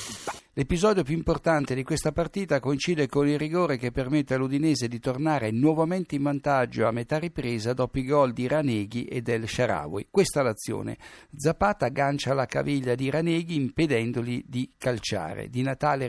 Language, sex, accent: Italian, male, native